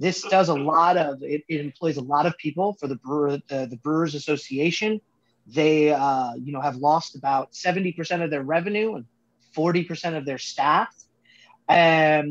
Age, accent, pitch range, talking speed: 30-49, American, 140-195 Hz, 170 wpm